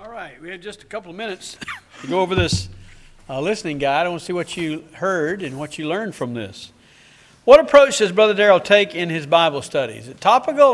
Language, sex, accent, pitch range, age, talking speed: English, male, American, 160-205 Hz, 50-69, 235 wpm